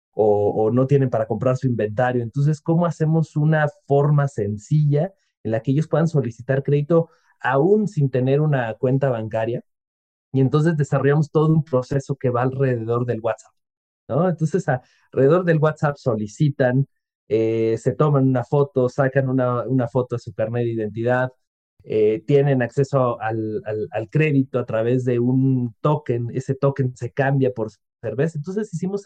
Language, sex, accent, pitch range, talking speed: Spanish, male, Mexican, 120-150 Hz, 155 wpm